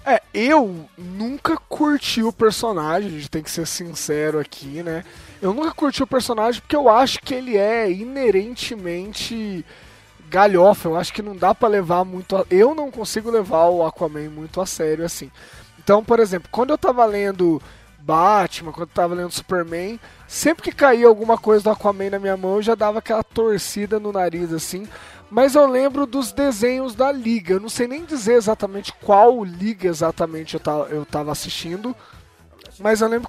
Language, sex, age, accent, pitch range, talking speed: Portuguese, male, 20-39, Brazilian, 175-240 Hz, 180 wpm